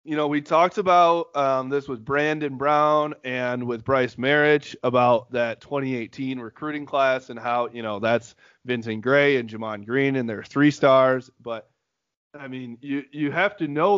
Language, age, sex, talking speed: English, 20-39, male, 175 wpm